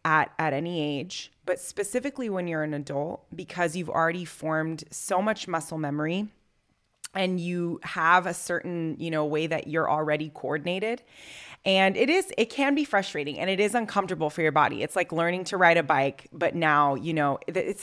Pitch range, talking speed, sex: 155-190 Hz, 190 wpm, female